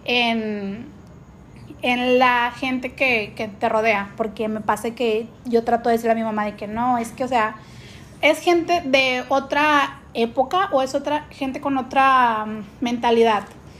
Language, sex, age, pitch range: Spanish, female, 30-49, 230-275 Hz